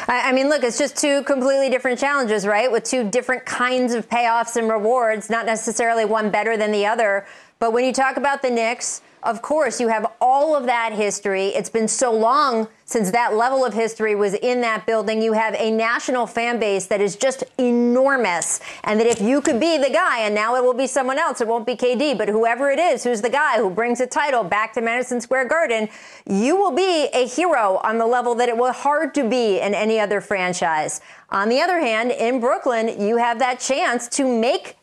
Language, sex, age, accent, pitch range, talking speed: English, female, 30-49, American, 210-255 Hz, 220 wpm